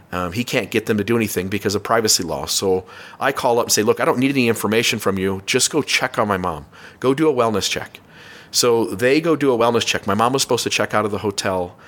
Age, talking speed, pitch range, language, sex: 40-59, 275 wpm, 100-125 Hz, English, male